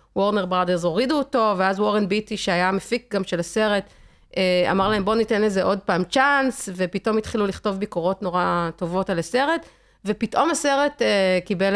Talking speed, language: 160 wpm, Hebrew